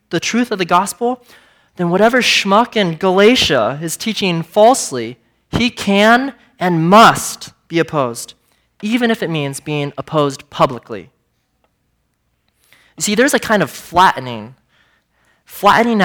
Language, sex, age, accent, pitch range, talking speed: English, male, 20-39, American, 135-200 Hz, 125 wpm